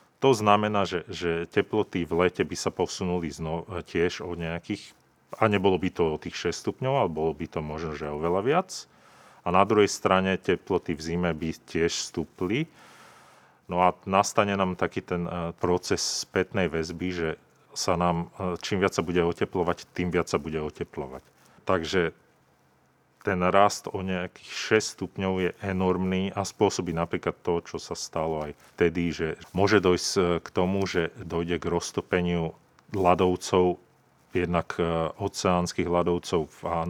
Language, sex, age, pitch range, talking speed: Slovak, male, 40-59, 85-95 Hz, 150 wpm